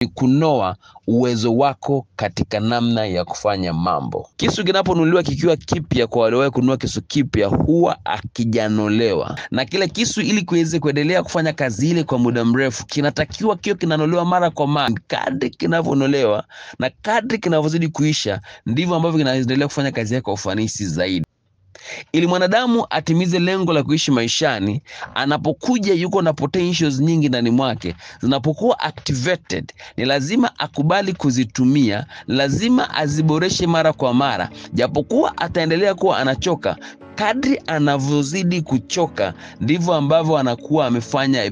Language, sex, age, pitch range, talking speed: Swahili, male, 30-49, 120-165 Hz, 125 wpm